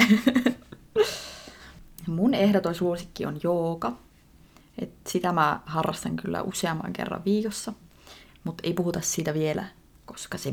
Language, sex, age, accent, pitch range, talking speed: Finnish, female, 20-39, native, 160-200 Hz, 110 wpm